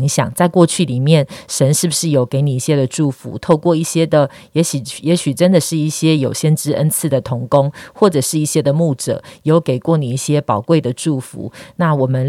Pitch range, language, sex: 135-170 Hz, Chinese, female